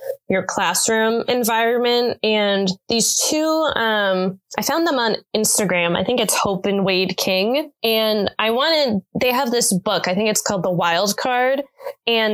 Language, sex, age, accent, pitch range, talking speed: English, female, 20-39, American, 195-250 Hz, 165 wpm